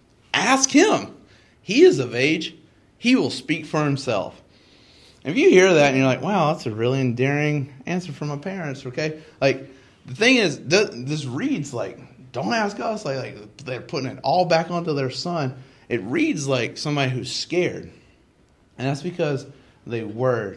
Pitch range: 110-150 Hz